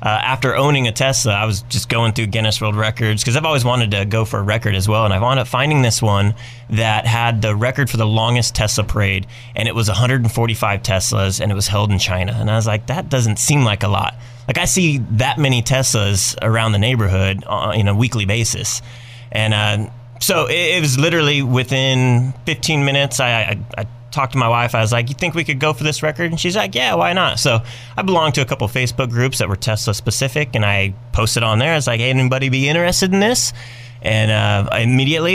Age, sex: 20-39, male